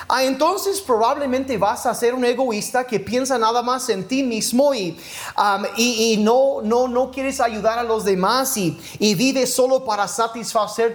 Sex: male